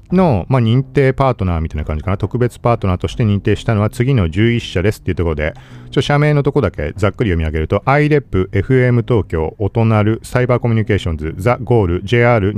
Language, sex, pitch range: Japanese, male, 90-130 Hz